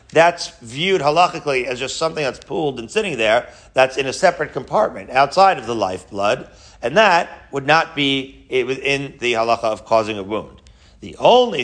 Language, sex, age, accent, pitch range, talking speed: English, male, 40-59, American, 110-140 Hz, 175 wpm